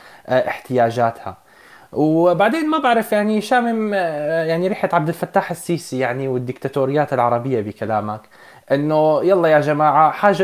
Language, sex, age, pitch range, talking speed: Arabic, male, 20-39, 135-190 Hz, 115 wpm